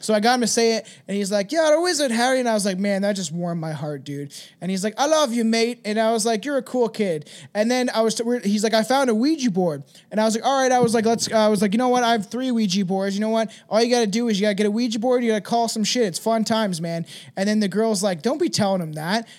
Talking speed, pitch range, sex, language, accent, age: 325 wpm, 200-245 Hz, male, English, American, 20-39